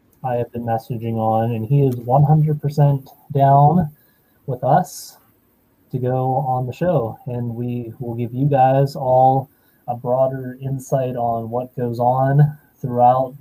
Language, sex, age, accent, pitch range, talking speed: English, male, 20-39, American, 120-145 Hz, 150 wpm